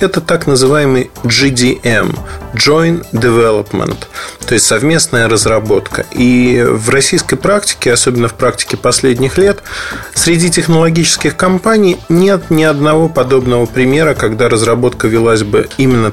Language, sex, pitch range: Russian, male, 110-135 Hz